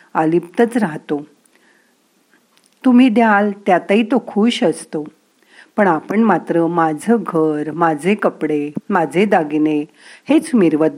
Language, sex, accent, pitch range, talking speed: Marathi, female, native, 160-225 Hz, 105 wpm